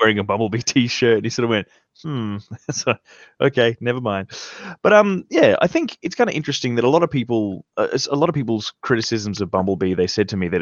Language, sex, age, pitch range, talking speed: English, male, 20-39, 95-125 Hz, 225 wpm